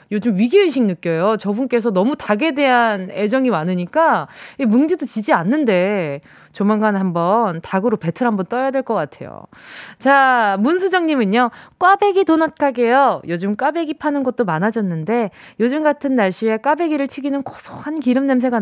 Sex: female